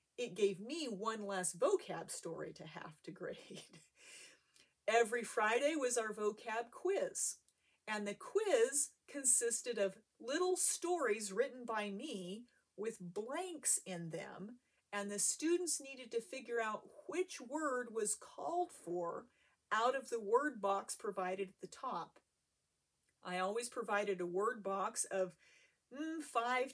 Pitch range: 185-265 Hz